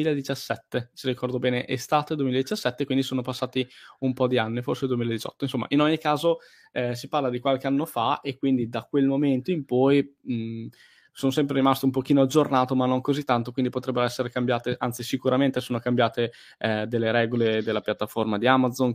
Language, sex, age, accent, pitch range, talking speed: Italian, male, 10-29, native, 115-135 Hz, 185 wpm